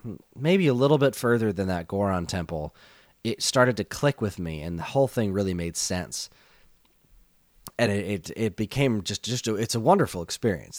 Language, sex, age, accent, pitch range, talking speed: English, male, 30-49, American, 90-110 Hz, 190 wpm